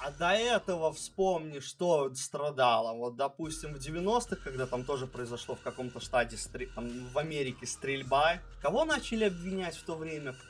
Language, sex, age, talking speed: Russian, male, 20-39, 160 wpm